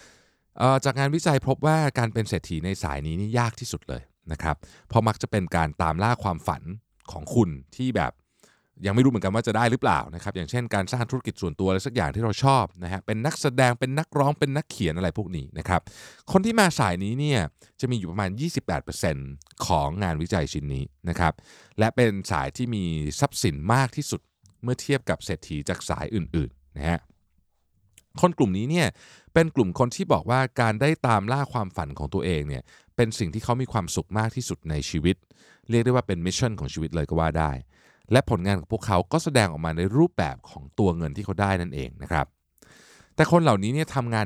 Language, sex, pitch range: Thai, male, 85-130 Hz